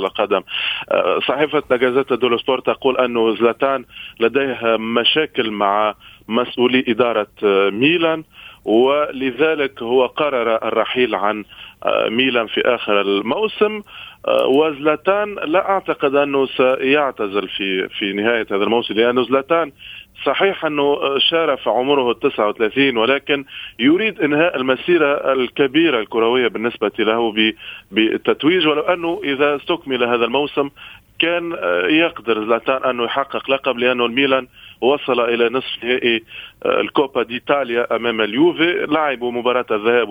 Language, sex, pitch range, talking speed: Arabic, male, 115-150 Hz, 110 wpm